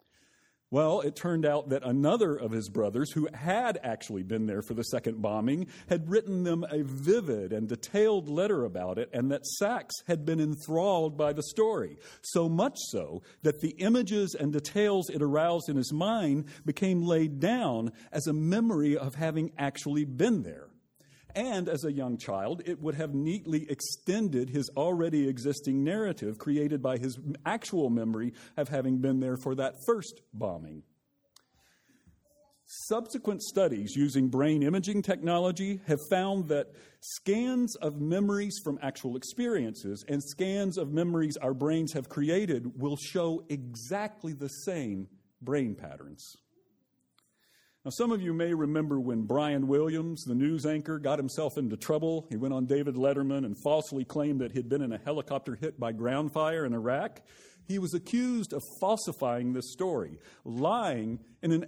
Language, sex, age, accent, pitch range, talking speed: English, male, 50-69, American, 135-175 Hz, 160 wpm